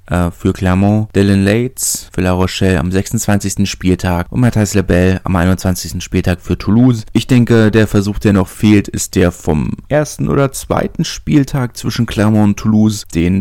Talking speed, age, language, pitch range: 165 wpm, 30-49, German, 90-105 Hz